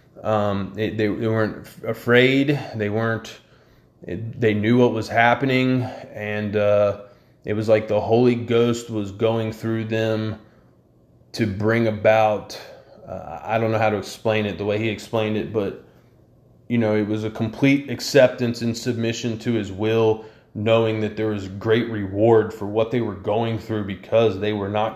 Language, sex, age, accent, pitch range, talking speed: English, male, 20-39, American, 105-120 Hz, 170 wpm